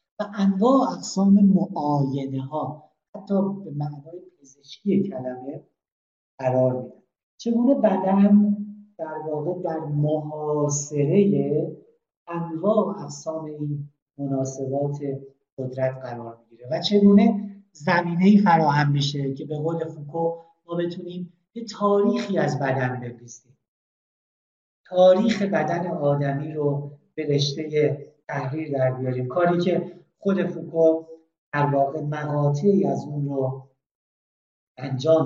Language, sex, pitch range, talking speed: Persian, male, 145-195 Hz, 105 wpm